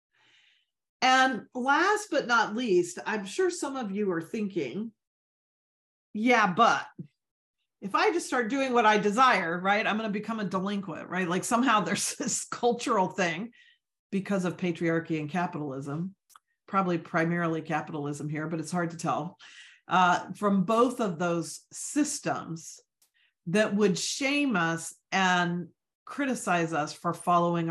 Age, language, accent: 40-59, English, American